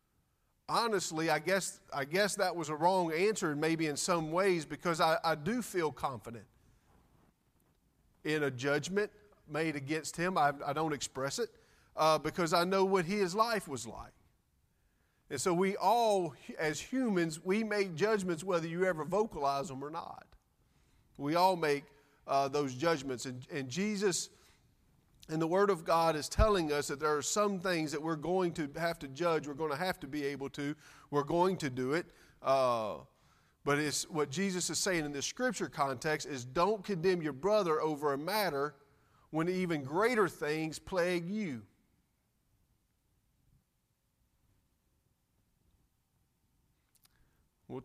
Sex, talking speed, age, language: male, 155 wpm, 40-59, English